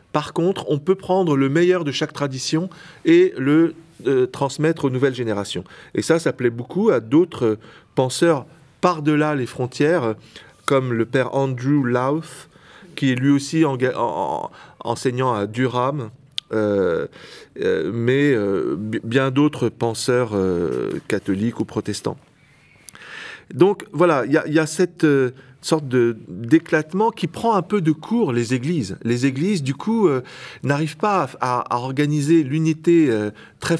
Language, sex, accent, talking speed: French, male, French, 145 wpm